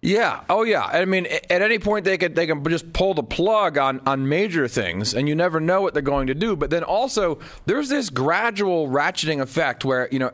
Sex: male